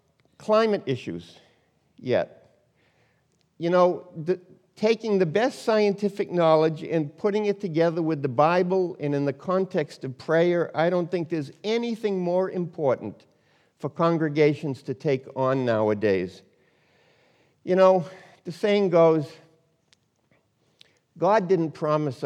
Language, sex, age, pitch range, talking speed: English, male, 60-79, 145-190 Hz, 120 wpm